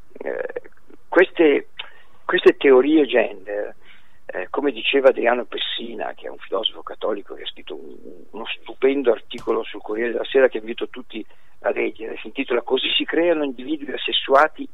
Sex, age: male, 50-69